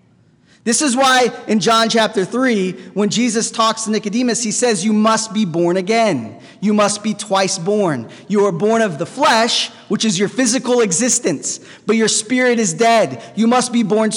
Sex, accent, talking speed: male, American, 185 wpm